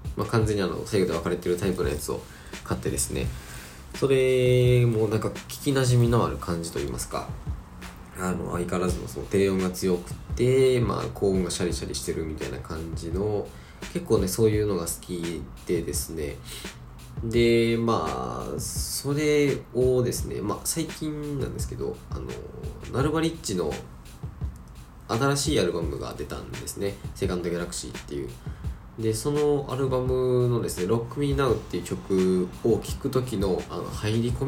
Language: Japanese